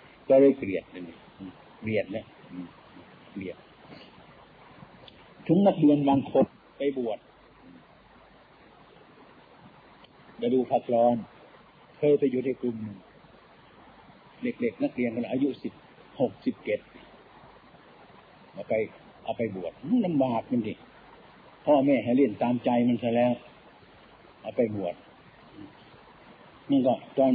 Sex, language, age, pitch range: male, Thai, 60-79, 125-170 Hz